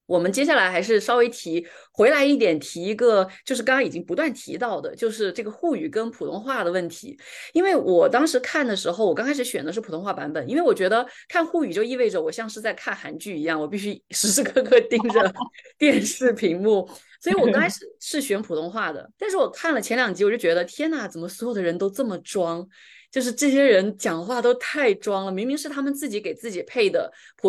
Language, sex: Chinese, female